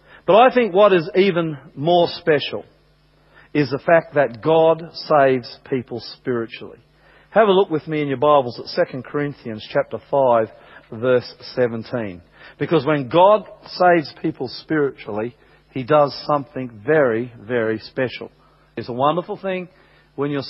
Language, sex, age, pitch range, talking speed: English, male, 40-59, 135-180 Hz, 145 wpm